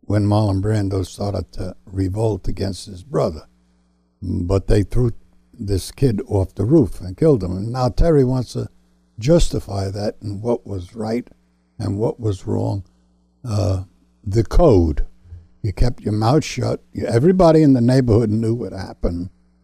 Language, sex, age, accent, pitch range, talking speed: English, male, 60-79, American, 80-115 Hz, 155 wpm